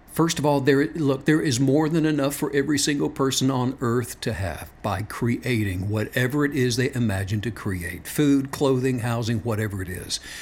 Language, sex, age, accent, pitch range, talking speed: English, male, 60-79, American, 125-170 Hz, 190 wpm